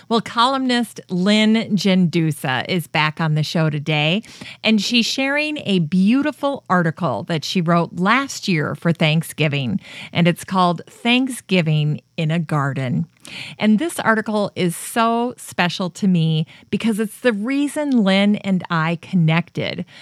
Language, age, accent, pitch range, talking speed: English, 40-59, American, 160-205 Hz, 140 wpm